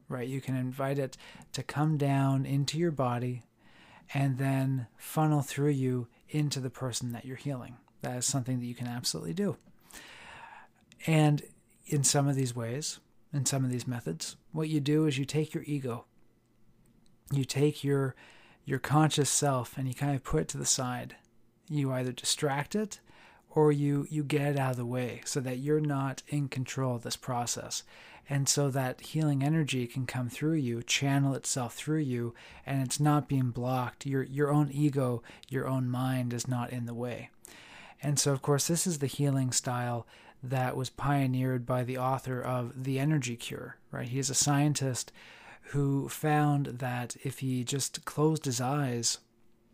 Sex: male